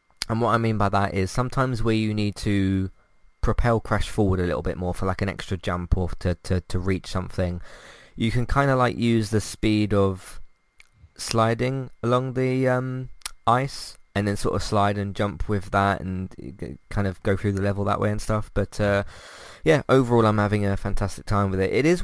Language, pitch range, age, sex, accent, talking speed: English, 90-110 Hz, 20-39, male, British, 210 wpm